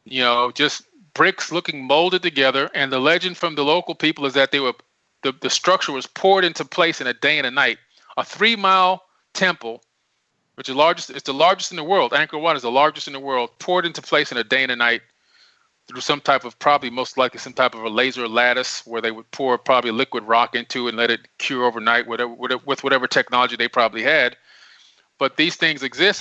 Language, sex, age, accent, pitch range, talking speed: English, male, 30-49, American, 125-165 Hz, 225 wpm